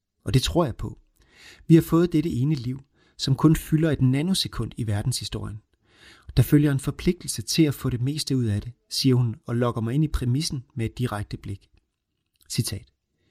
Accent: native